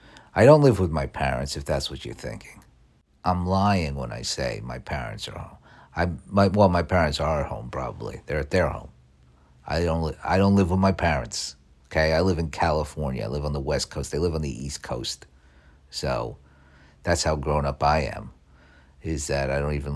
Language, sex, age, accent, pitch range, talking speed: English, male, 50-69, American, 70-85 Hz, 200 wpm